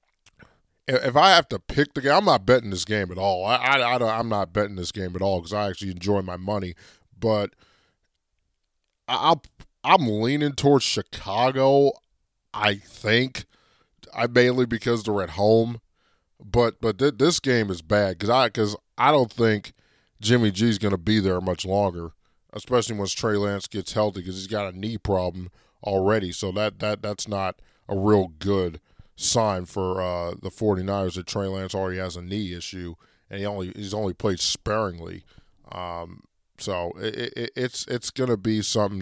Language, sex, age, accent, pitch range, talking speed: English, male, 20-39, American, 95-110 Hz, 180 wpm